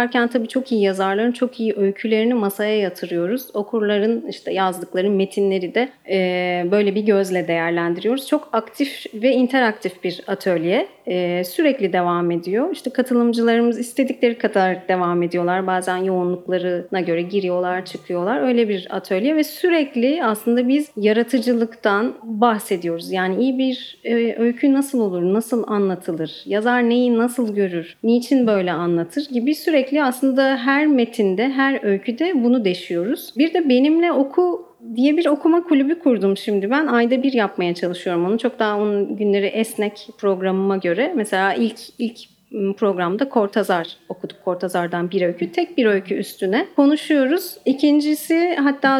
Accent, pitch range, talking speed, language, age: native, 190-255 Hz, 140 wpm, Turkish, 30-49